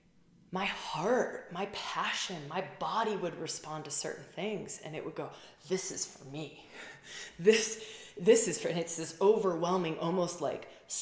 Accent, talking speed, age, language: American, 160 wpm, 20-39, English